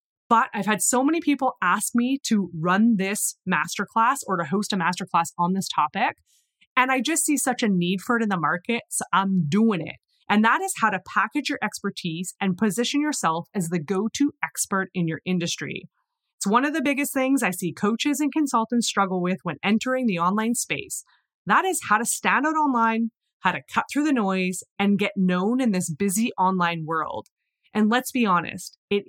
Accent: American